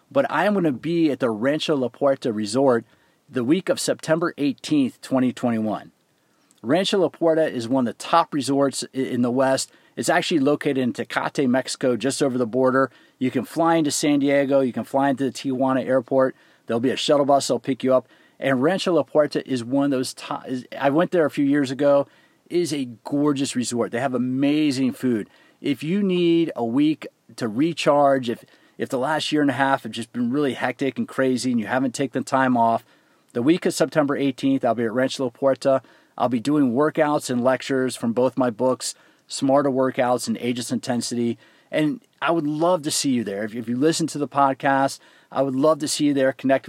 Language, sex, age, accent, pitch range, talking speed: English, male, 40-59, American, 125-150 Hz, 215 wpm